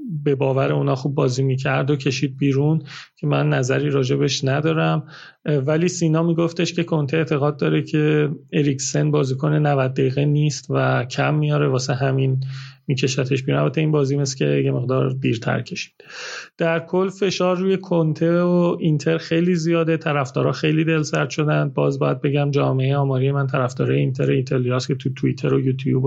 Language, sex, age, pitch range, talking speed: Persian, male, 30-49, 130-150 Hz, 165 wpm